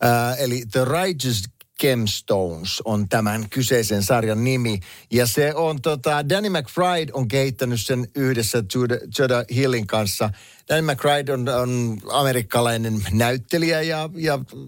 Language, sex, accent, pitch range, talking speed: Finnish, male, native, 95-130 Hz, 130 wpm